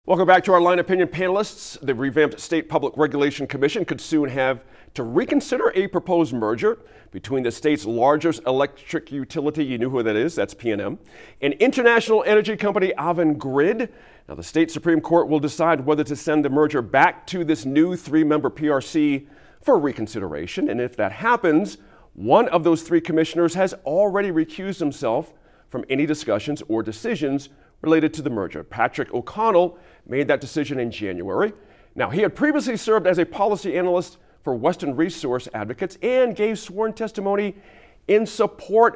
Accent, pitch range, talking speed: American, 140-200 Hz, 165 wpm